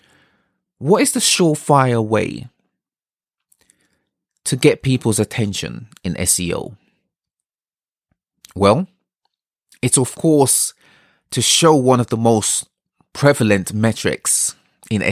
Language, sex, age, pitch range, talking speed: English, male, 30-49, 105-145 Hz, 95 wpm